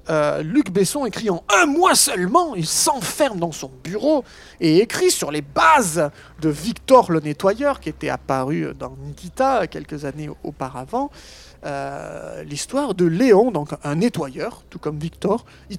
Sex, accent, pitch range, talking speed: male, French, 145-200 Hz, 155 wpm